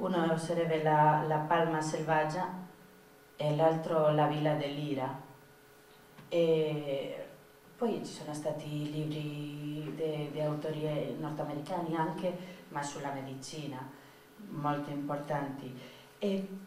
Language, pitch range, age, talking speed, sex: Italian, 150-180 Hz, 30-49, 95 wpm, female